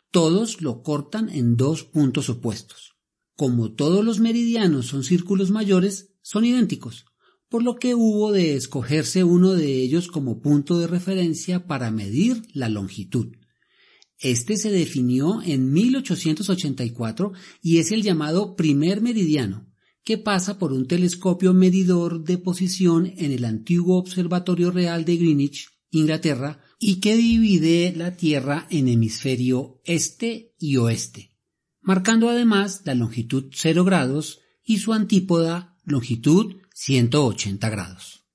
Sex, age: male, 40-59